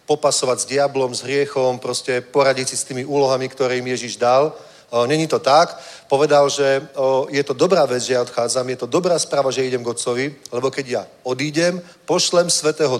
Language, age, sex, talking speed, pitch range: Czech, 40-59, male, 185 wpm, 130-170 Hz